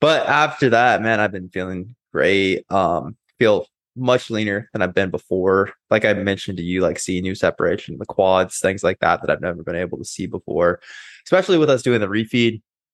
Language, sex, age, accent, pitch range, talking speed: English, male, 20-39, American, 95-120 Hz, 205 wpm